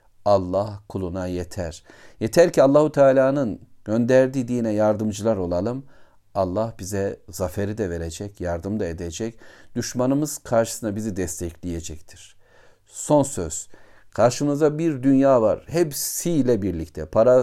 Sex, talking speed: male, 110 wpm